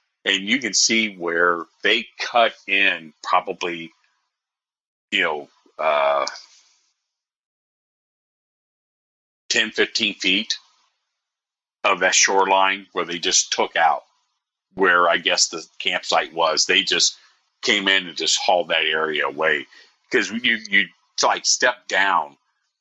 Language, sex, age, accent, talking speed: English, male, 40-59, American, 120 wpm